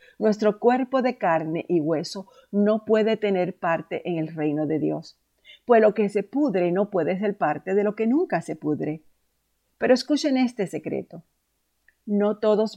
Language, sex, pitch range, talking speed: Spanish, female, 175-240 Hz, 170 wpm